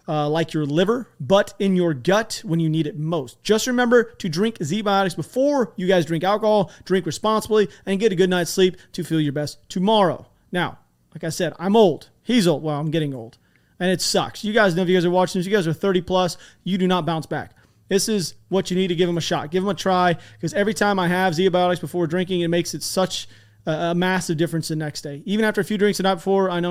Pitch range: 160-190 Hz